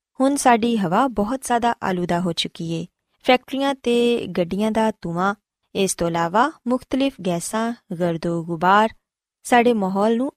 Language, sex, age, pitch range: Punjabi, female, 20-39, 180-240 Hz